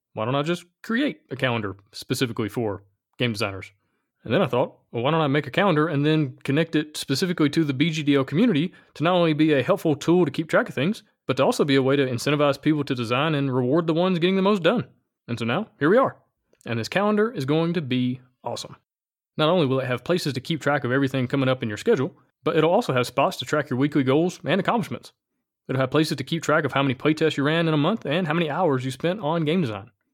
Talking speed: 255 wpm